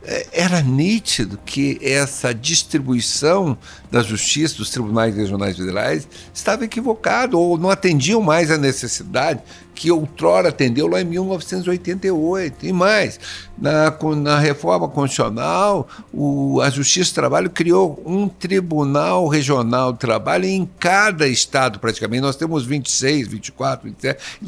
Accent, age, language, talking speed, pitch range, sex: Brazilian, 60-79, Portuguese, 125 wpm, 100-160 Hz, male